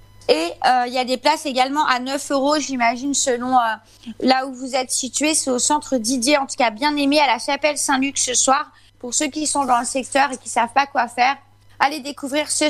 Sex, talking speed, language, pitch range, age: female, 240 wpm, French, 240-305 Hz, 20-39